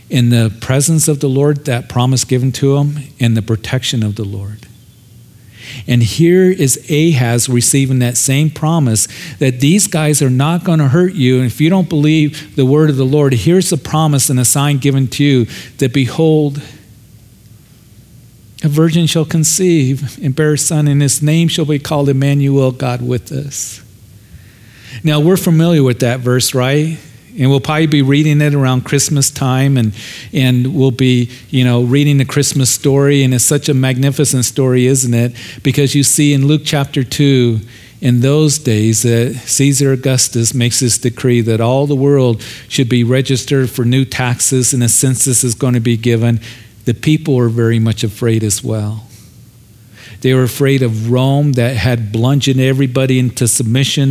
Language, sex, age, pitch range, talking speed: English, male, 40-59, 120-145 Hz, 175 wpm